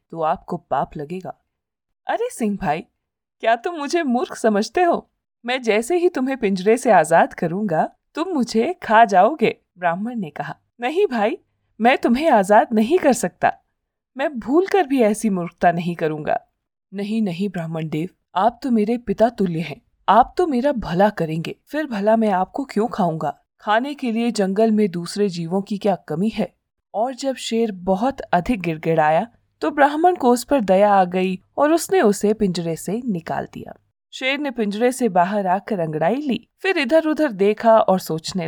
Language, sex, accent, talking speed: Hindi, female, native, 170 wpm